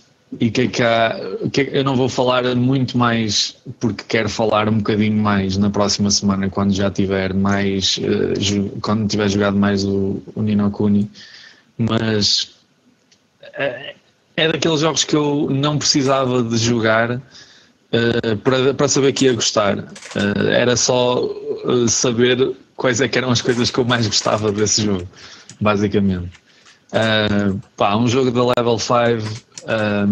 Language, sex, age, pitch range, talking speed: Portuguese, male, 20-39, 100-120 Hz, 155 wpm